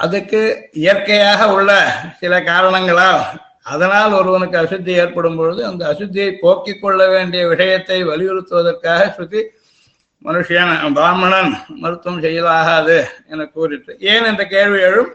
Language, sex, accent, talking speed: Tamil, male, native, 110 wpm